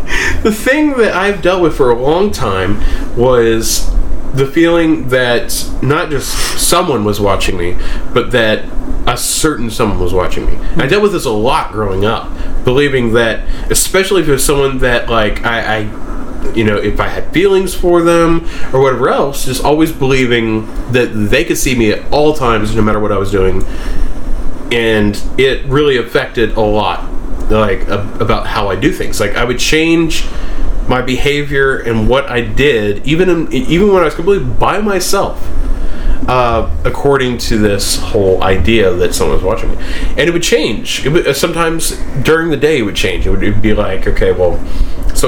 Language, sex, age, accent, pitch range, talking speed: English, male, 20-39, American, 105-155 Hz, 185 wpm